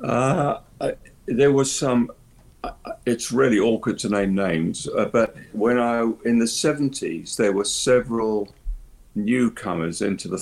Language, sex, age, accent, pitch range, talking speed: English, male, 50-69, British, 85-105 Hz, 145 wpm